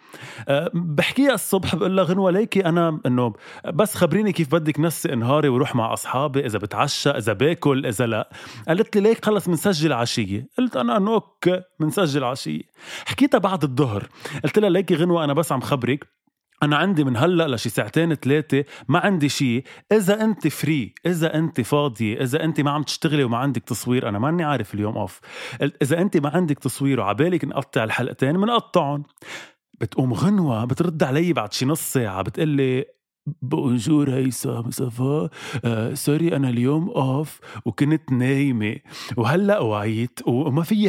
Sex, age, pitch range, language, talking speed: male, 20-39, 125-175 Hz, Arabic, 155 wpm